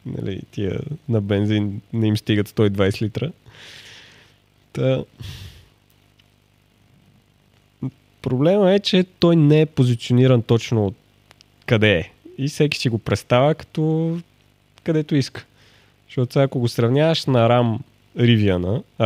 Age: 20-39